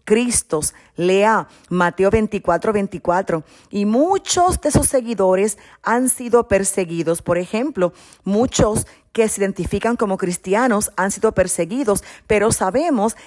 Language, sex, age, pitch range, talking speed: Spanish, female, 40-59, 180-255 Hz, 120 wpm